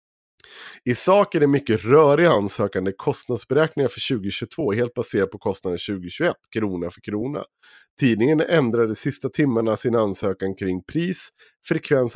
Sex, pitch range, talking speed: male, 100-140 Hz, 135 wpm